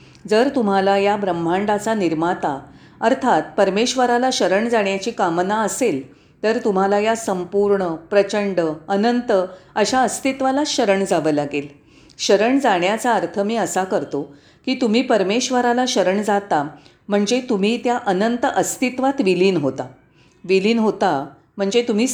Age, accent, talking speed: 40-59, native, 120 wpm